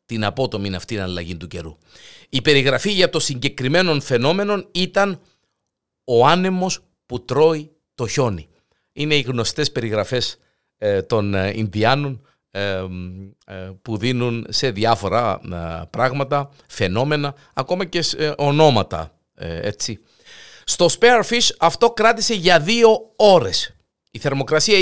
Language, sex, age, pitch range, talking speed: Greek, male, 50-69, 115-170 Hz, 105 wpm